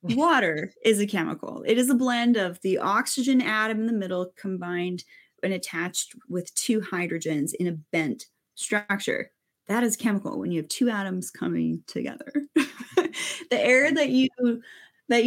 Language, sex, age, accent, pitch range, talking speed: English, female, 20-39, American, 185-255 Hz, 155 wpm